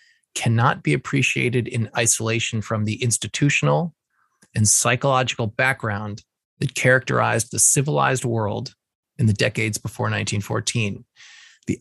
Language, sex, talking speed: English, male, 110 wpm